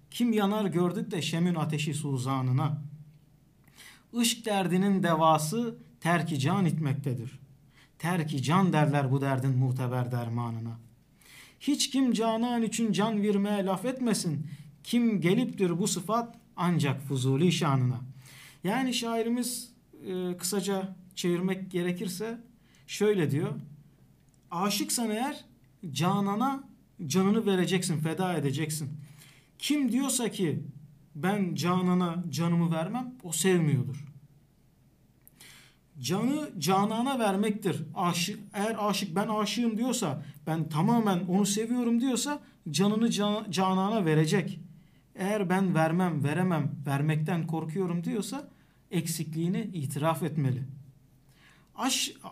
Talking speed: 100 wpm